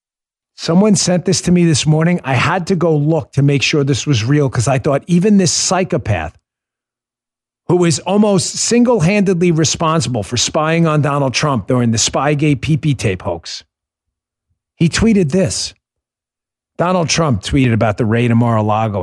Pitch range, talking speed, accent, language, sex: 120-175 Hz, 160 wpm, American, English, male